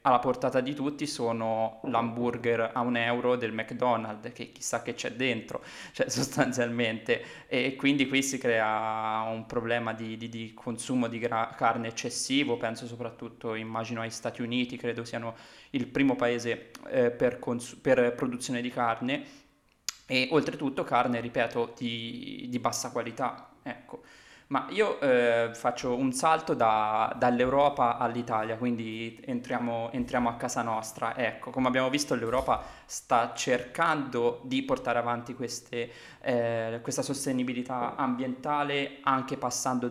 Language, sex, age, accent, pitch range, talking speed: Italian, male, 20-39, native, 115-130 Hz, 140 wpm